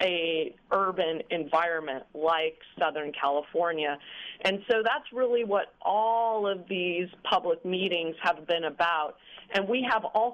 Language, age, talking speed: English, 40-59, 135 wpm